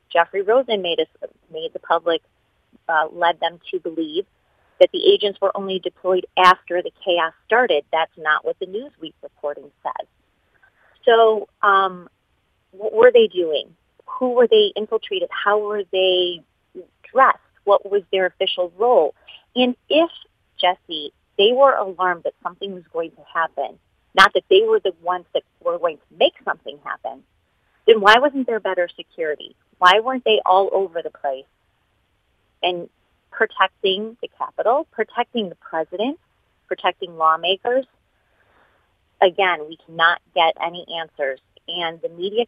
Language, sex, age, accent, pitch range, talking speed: English, female, 30-49, American, 165-225 Hz, 145 wpm